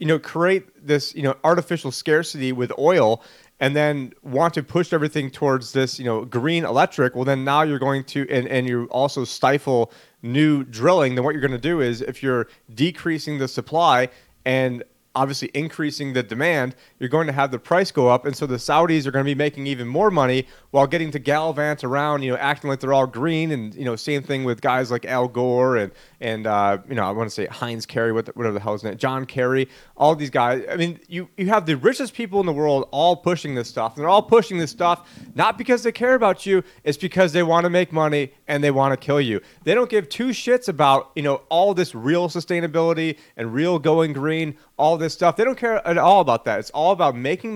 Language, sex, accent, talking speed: English, male, American, 230 wpm